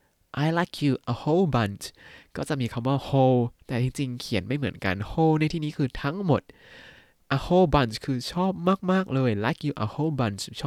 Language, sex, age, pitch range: Thai, male, 20-39, 110-140 Hz